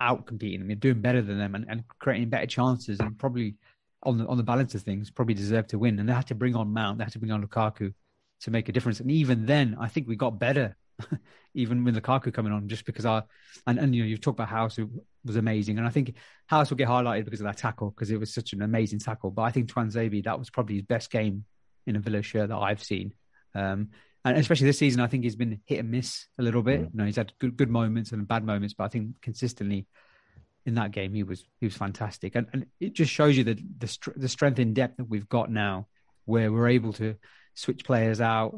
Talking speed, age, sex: 260 wpm, 30-49, male